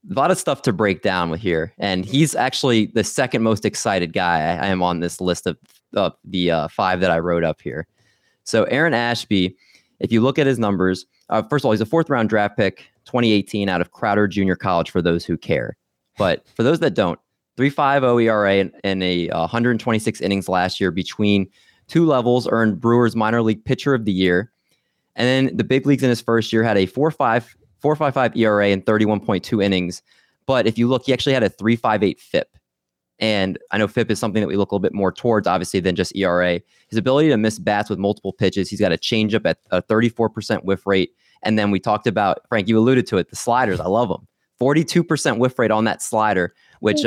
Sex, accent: male, American